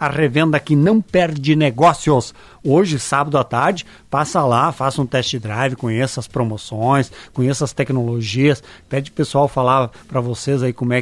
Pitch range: 125-150 Hz